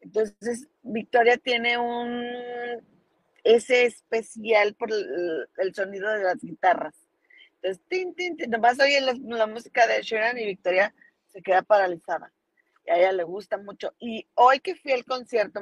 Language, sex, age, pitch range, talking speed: Spanish, female, 30-49, 195-245 Hz, 160 wpm